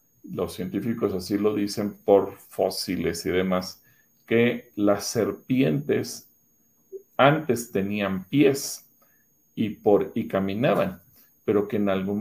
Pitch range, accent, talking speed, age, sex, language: 90-115 Hz, Mexican, 110 wpm, 40-59, male, Spanish